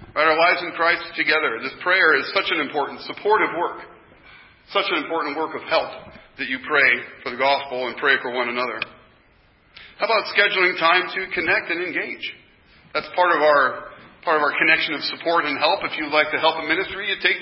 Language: English